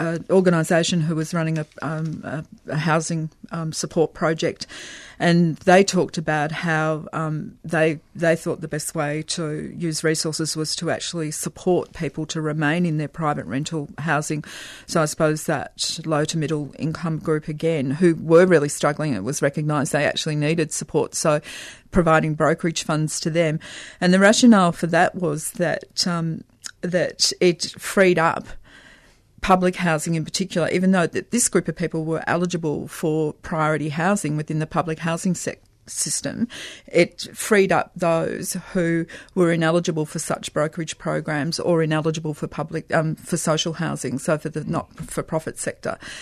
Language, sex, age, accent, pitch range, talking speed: English, female, 40-59, Australian, 155-175 Hz, 160 wpm